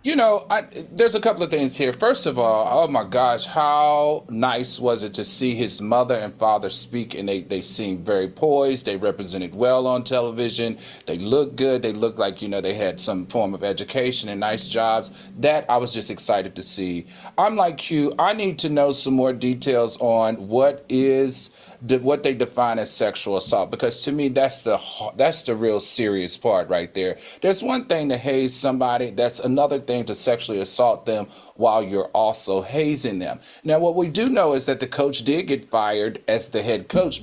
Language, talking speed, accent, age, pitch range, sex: English, 200 wpm, American, 40-59, 125-160 Hz, male